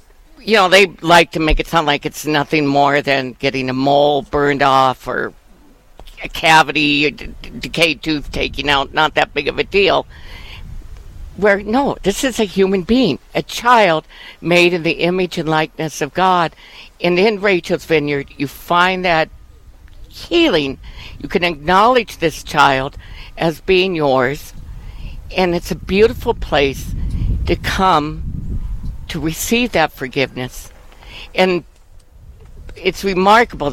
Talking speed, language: 140 wpm, English